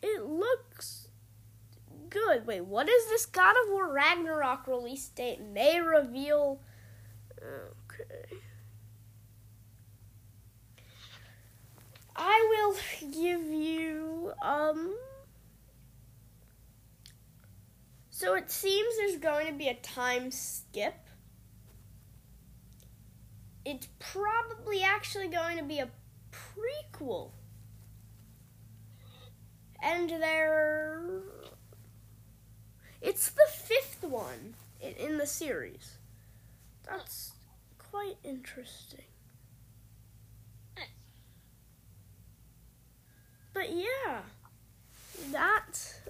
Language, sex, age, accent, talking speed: English, female, 20-39, American, 70 wpm